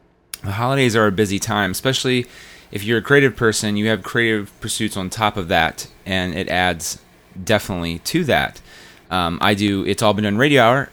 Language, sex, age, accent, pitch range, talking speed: English, male, 30-49, American, 90-115 Hz, 190 wpm